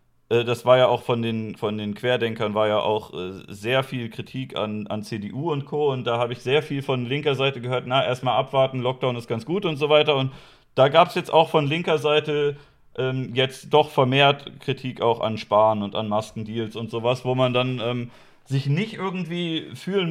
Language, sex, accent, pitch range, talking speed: German, male, German, 120-150 Hz, 210 wpm